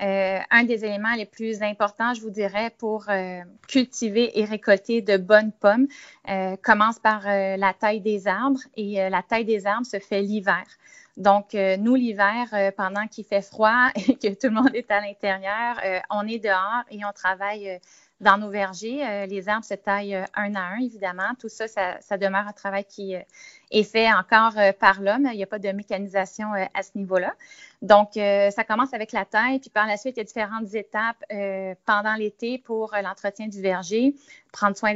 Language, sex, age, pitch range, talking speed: French, female, 30-49, 195-220 Hz, 195 wpm